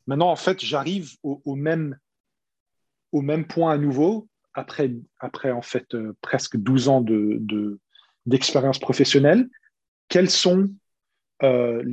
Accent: French